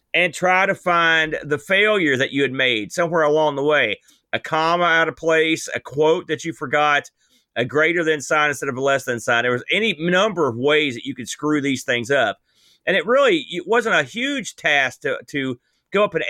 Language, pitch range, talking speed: English, 140-180 Hz, 220 wpm